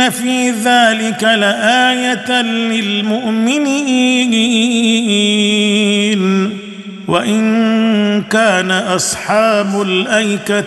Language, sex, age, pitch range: Arabic, male, 50-69, 205-250 Hz